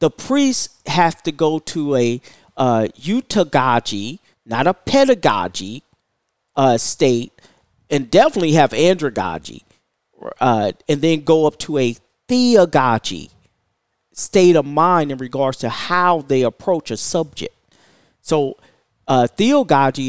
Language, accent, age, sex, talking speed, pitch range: English, American, 40-59, male, 120 wpm, 130-175 Hz